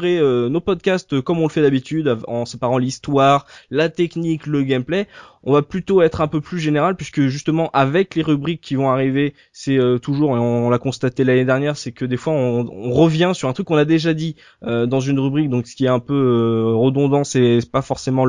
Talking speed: 235 wpm